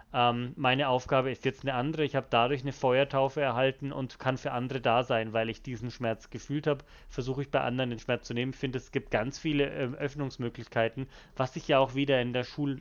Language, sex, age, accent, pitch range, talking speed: German, male, 30-49, German, 120-145 Hz, 225 wpm